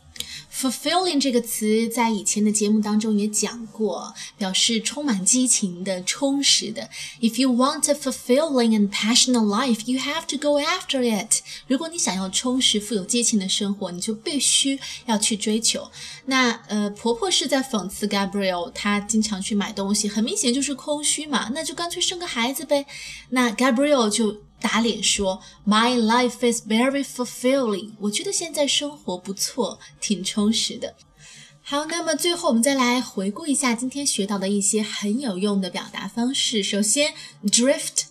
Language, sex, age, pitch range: Chinese, female, 20-39, 205-260 Hz